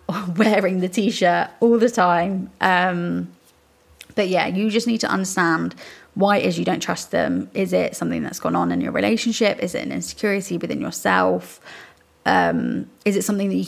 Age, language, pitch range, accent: 20-39, English, 175-205 Hz, British